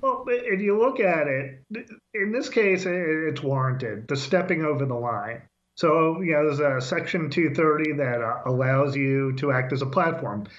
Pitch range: 135-165 Hz